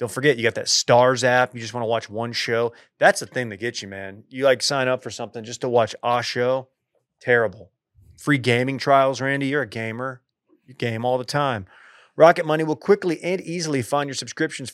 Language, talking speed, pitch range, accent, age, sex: English, 220 wpm, 120-145 Hz, American, 30-49, male